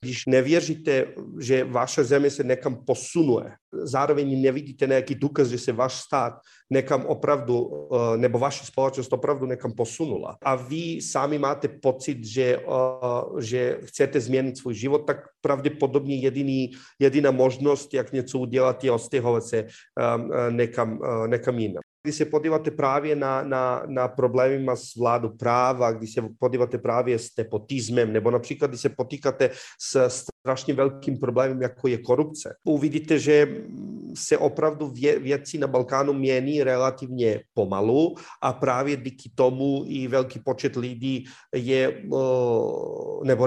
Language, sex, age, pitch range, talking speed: Czech, male, 40-59, 125-140 Hz, 135 wpm